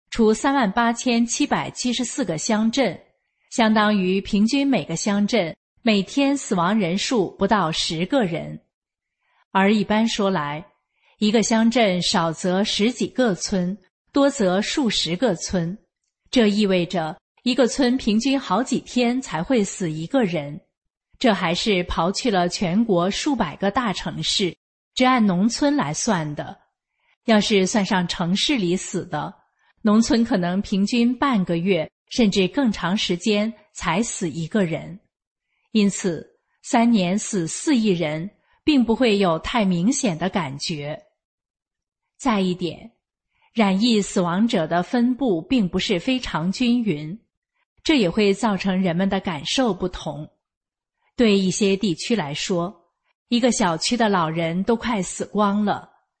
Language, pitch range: English, 180-235 Hz